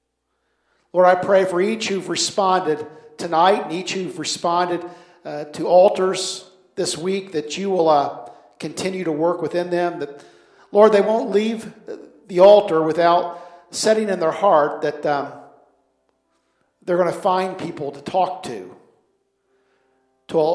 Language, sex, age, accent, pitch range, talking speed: English, male, 50-69, American, 150-190 Hz, 145 wpm